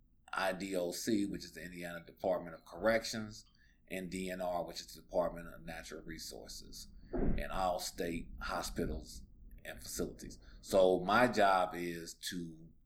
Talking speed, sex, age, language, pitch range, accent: 130 wpm, male, 40-59, English, 80-105 Hz, American